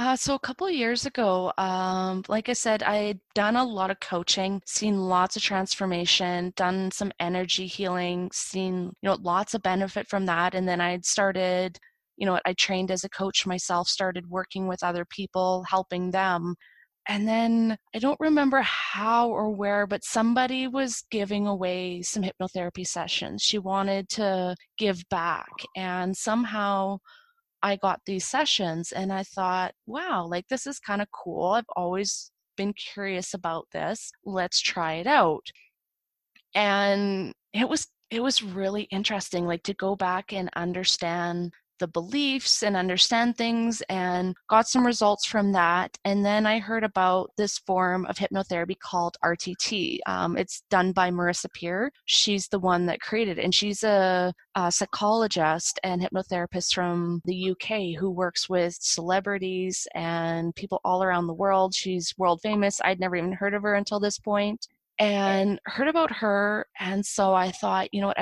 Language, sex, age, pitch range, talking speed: English, female, 20-39, 180-210 Hz, 165 wpm